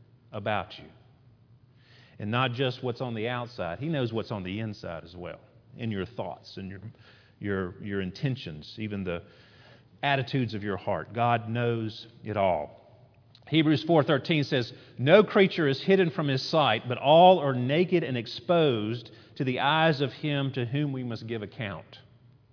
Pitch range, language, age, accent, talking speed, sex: 110-140 Hz, English, 40-59, American, 170 wpm, male